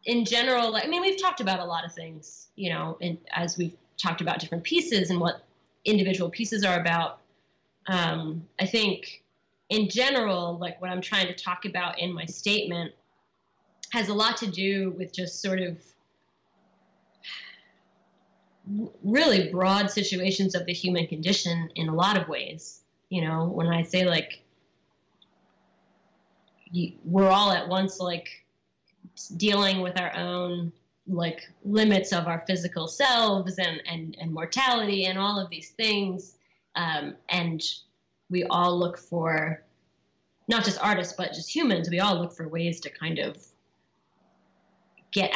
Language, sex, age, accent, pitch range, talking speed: English, female, 20-39, American, 170-195 Hz, 150 wpm